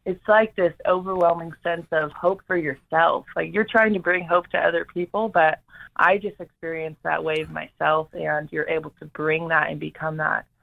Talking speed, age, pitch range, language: 190 wpm, 20-39, 155-175 Hz, English